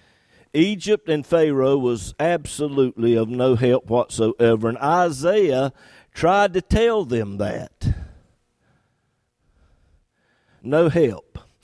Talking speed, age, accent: 95 wpm, 50-69, American